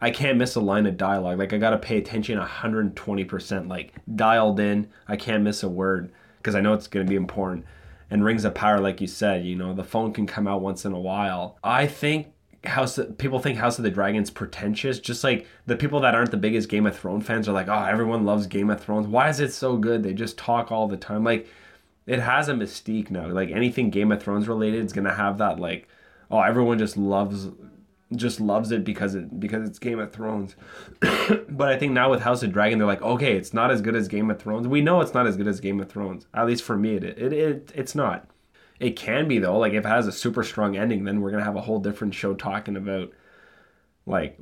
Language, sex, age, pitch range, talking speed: English, male, 20-39, 100-115 Hz, 245 wpm